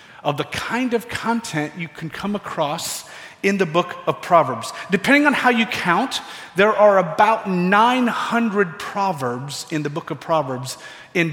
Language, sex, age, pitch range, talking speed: English, male, 40-59, 150-205 Hz, 160 wpm